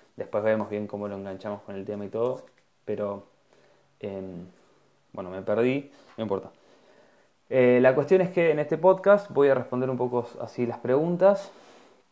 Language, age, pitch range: Spanish, 20-39, 105-130 Hz